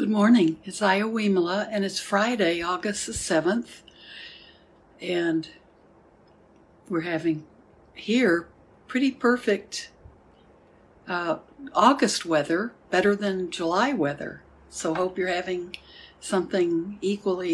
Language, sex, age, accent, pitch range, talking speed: English, female, 60-79, American, 170-210 Hz, 100 wpm